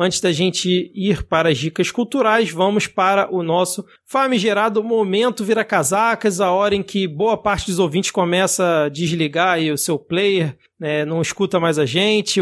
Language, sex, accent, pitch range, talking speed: Portuguese, male, Brazilian, 165-205 Hz, 180 wpm